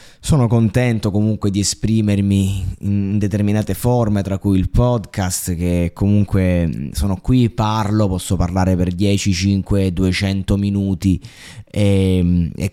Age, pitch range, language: 20-39, 90-105 Hz, Italian